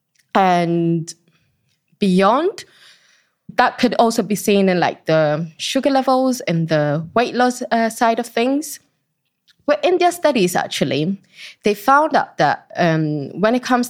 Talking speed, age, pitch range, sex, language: 140 wpm, 20-39, 175-245 Hz, female, English